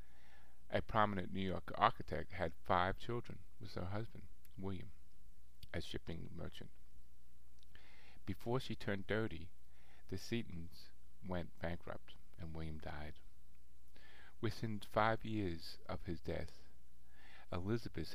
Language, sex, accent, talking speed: English, male, American, 110 wpm